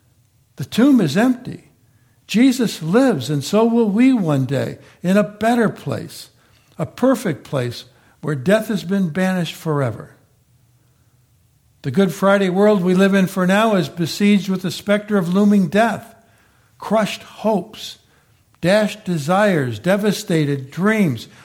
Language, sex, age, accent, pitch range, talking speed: English, male, 60-79, American, 130-205 Hz, 135 wpm